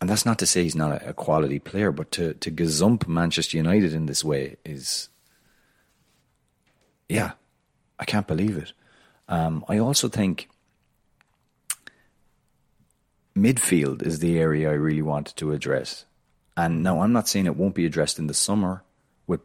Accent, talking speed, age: Irish, 155 wpm, 30-49